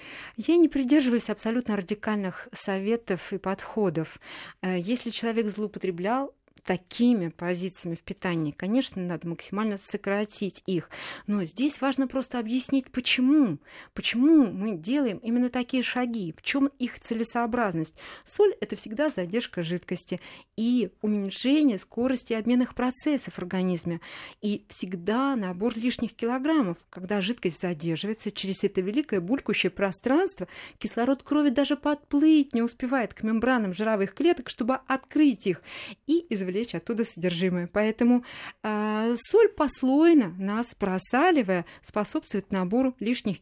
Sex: female